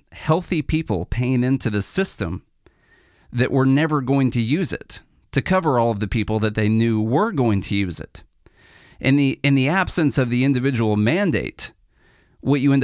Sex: male